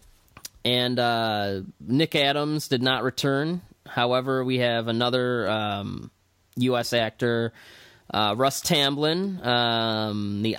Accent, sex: American, male